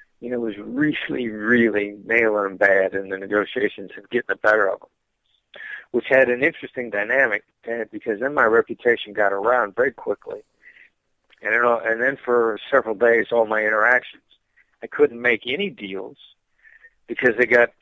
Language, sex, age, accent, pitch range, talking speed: English, male, 50-69, American, 110-130 Hz, 165 wpm